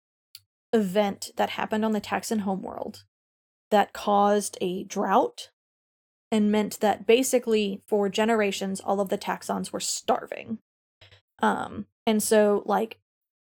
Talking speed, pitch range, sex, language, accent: 125 wpm, 200-230 Hz, female, English, American